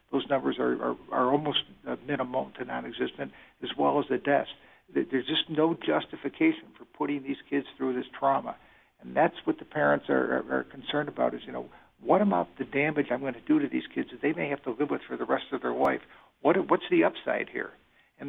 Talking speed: 225 wpm